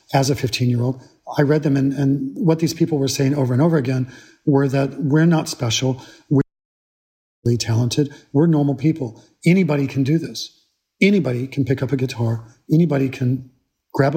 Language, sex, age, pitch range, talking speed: English, male, 40-59, 130-150 Hz, 180 wpm